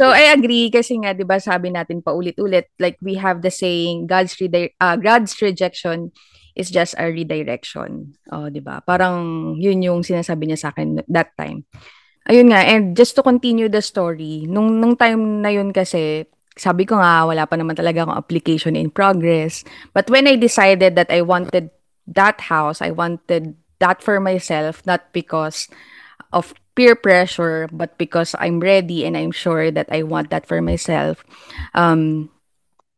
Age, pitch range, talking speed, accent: 20-39, 165-210 Hz, 175 wpm, native